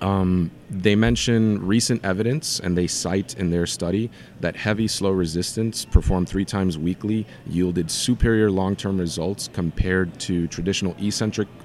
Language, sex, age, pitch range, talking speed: English, male, 30-49, 85-105 Hz, 140 wpm